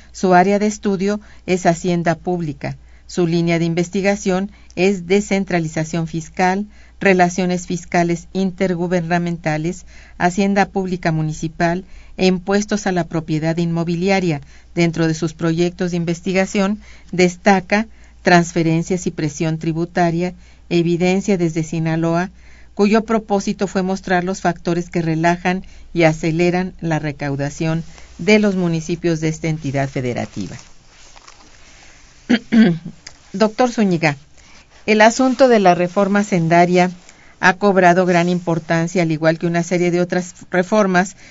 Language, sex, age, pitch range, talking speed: Spanish, female, 50-69, 165-190 Hz, 115 wpm